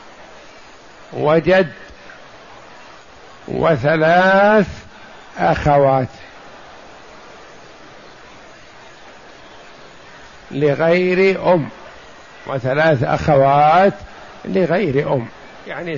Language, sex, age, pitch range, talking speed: Arabic, male, 60-79, 155-210 Hz, 40 wpm